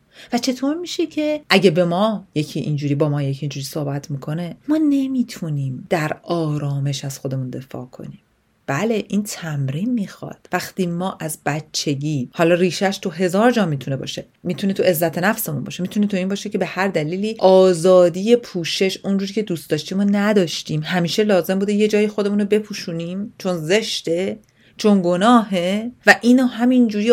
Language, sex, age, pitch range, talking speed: Persian, female, 40-59, 165-210 Hz, 165 wpm